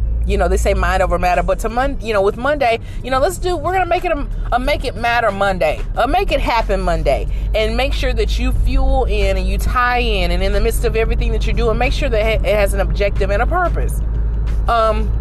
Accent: American